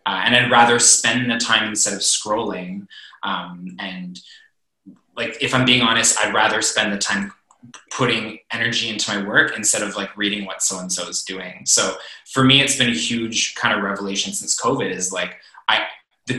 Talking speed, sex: 185 wpm, male